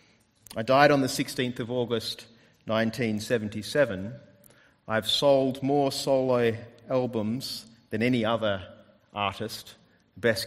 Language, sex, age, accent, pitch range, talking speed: English, male, 30-49, Australian, 110-150 Hz, 105 wpm